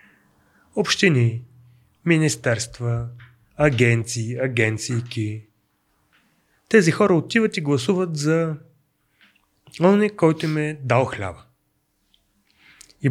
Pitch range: 120-145 Hz